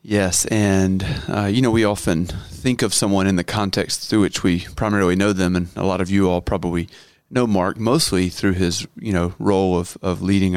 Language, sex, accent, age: English, male, American, 30-49